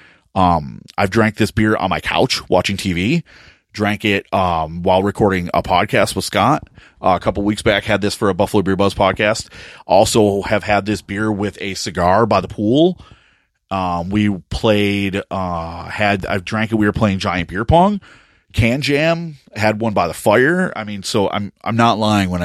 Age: 30-49